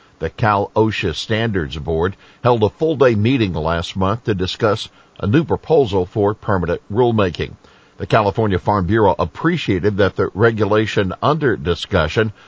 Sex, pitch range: male, 95-120 Hz